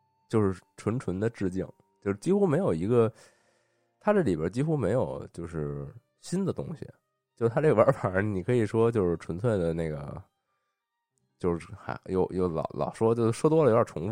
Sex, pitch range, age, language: male, 85-125 Hz, 20-39, Chinese